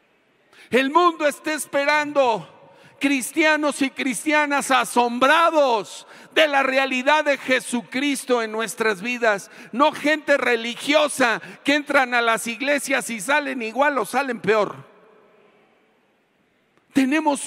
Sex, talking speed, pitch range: male, 105 wpm, 235-290 Hz